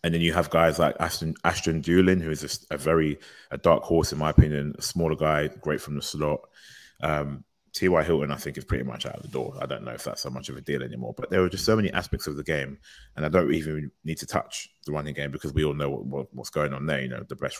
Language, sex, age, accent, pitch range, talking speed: English, male, 20-39, British, 70-75 Hz, 285 wpm